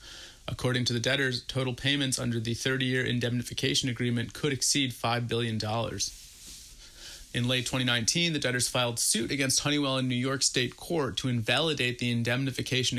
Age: 30-49